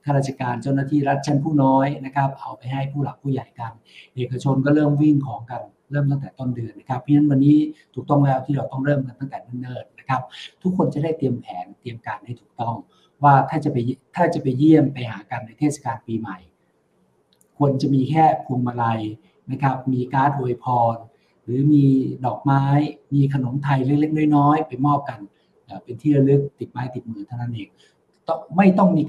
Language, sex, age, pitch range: Thai, male, 60-79, 125-155 Hz